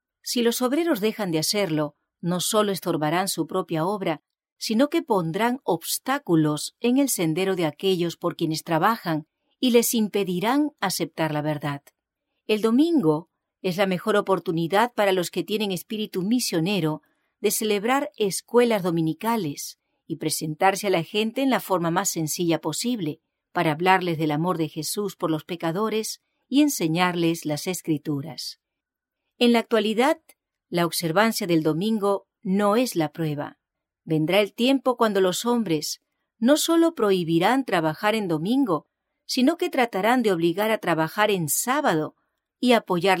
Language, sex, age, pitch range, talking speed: English, female, 40-59, 165-230 Hz, 145 wpm